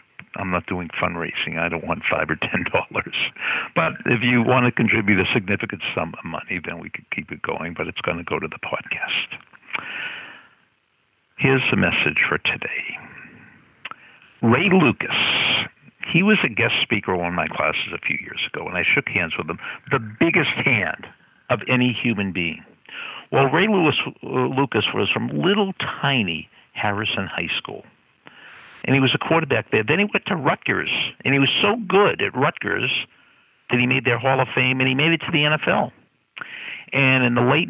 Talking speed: 185 wpm